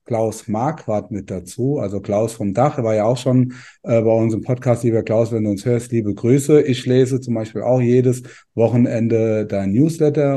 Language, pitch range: German, 110-145 Hz